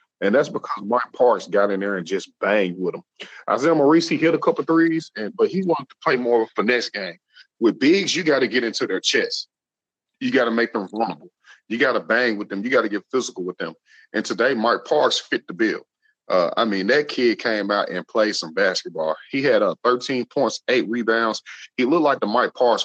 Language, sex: English, male